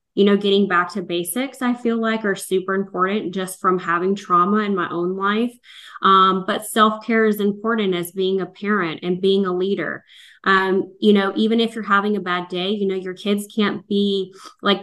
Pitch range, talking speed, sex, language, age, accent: 185-220 Hz, 200 wpm, female, English, 20-39, American